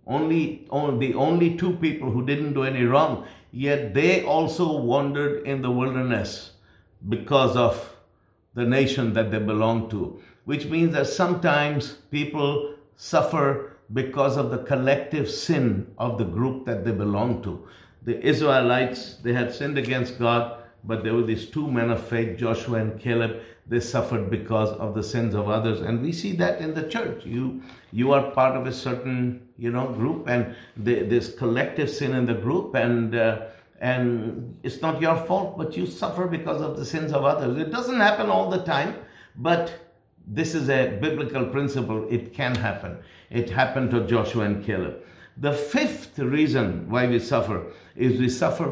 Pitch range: 115-145 Hz